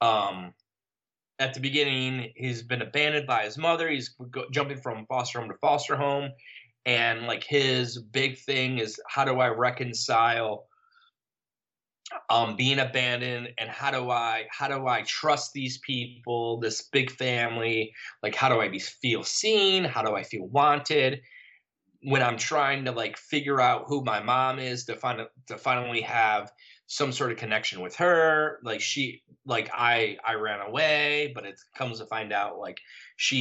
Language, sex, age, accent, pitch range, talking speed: English, male, 20-39, American, 115-140 Hz, 170 wpm